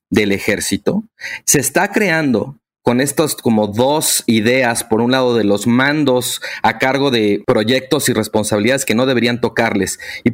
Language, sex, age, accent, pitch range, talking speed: Spanish, male, 40-59, Mexican, 120-160 Hz, 155 wpm